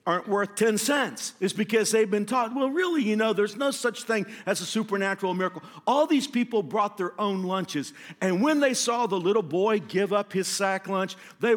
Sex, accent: male, American